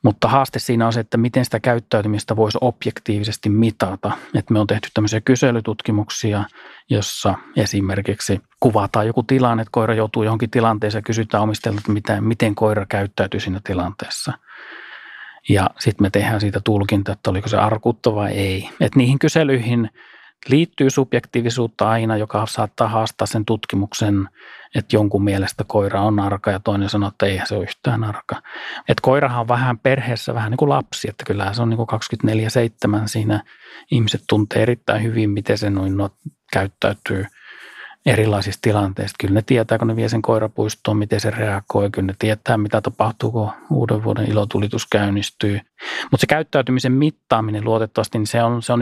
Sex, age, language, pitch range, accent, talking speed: male, 30-49, Finnish, 105-120 Hz, native, 160 wpm